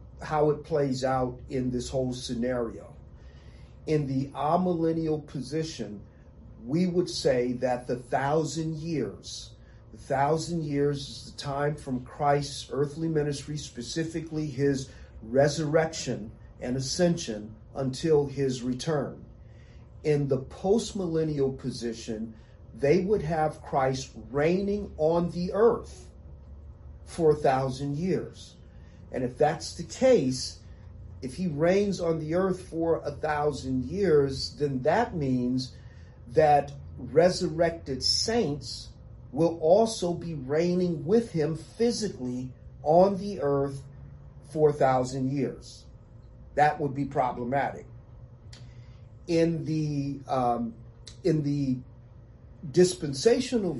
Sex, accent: male, American